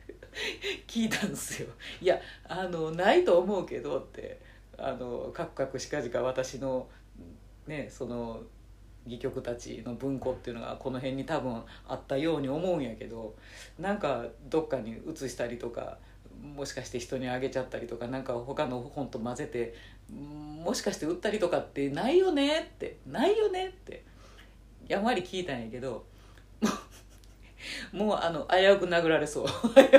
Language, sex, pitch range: Japanese, female, 120-200 Hz